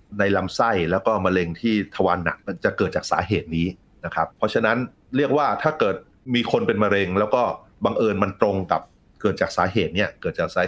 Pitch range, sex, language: 90-105 Hz, male, Thai